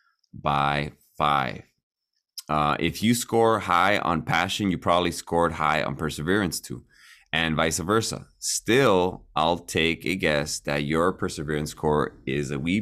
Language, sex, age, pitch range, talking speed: English, male, 20-39, 75-95 Hz, 145 wpm